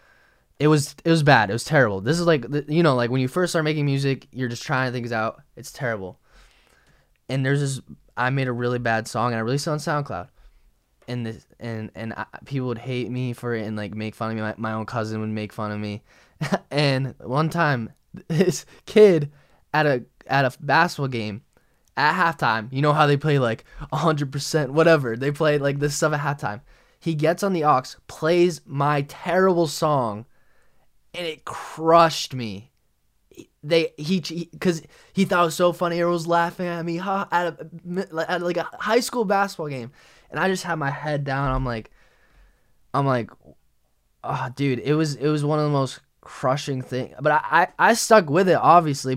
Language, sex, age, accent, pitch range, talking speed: English, male, 10-29, American, 120-165 Hz, 205 wpm